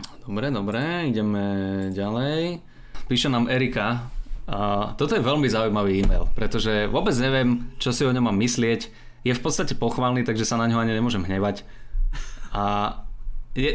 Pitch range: 110-125 Hz